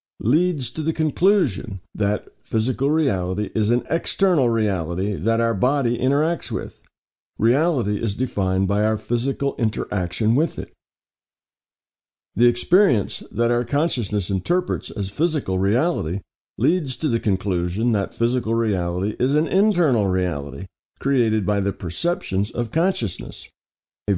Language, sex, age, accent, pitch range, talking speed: English, male, 50-69, American, 100-135 Hz, 130 wpm